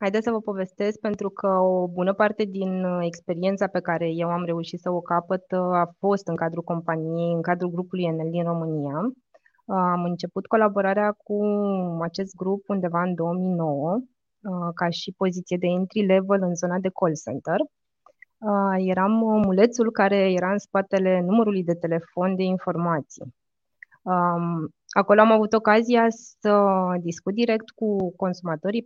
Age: 20-39